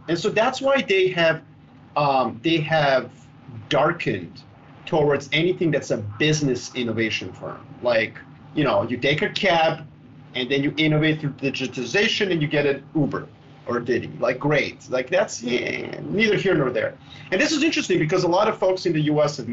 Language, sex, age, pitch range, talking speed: English, male, 30-49, 125-155 Hz, 180 wpm